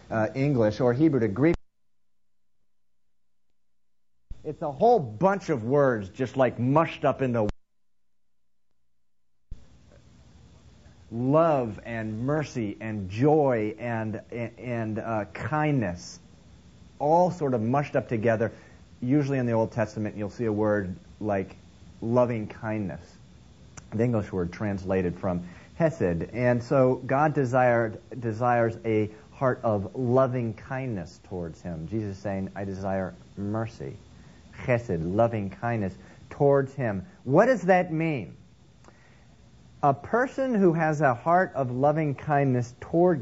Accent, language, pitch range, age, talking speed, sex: American, English, 105-140 Hz, 40-59, 120 wpm, male